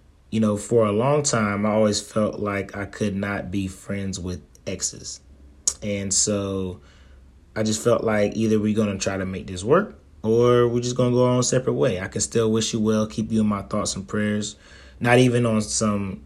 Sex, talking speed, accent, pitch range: male, 220 wpm, American, 95-110 Hz